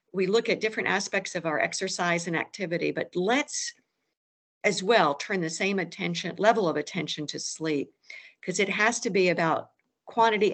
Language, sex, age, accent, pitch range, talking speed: English, female, 50-69, American, 180-245 Hz, 170 wpm